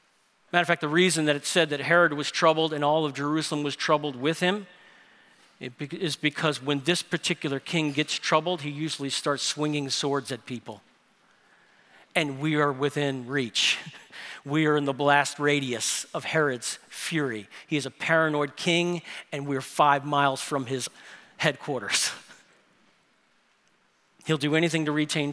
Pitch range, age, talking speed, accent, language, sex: 140-165 Hz, 40-59, 155 wpm, American, English, male